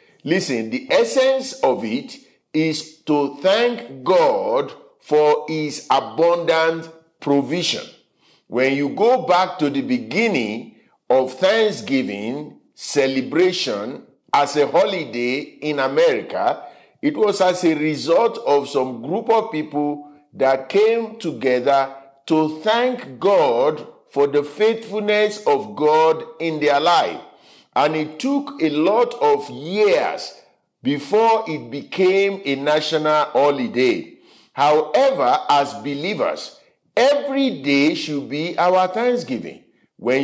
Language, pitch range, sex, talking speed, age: English, 145-225 Hz, male, 110 wpm, 50-69